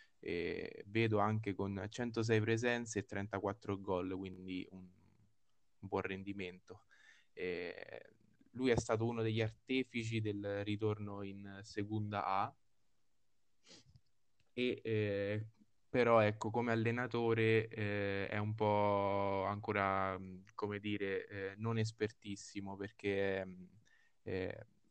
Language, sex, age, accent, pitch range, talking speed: Italian, male, 20-39, native, 100-110 Hz, 105 wpm